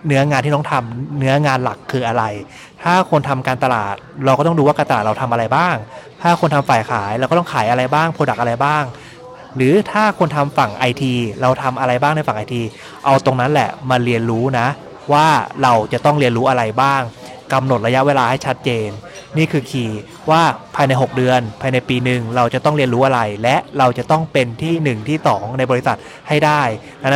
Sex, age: male, 20-39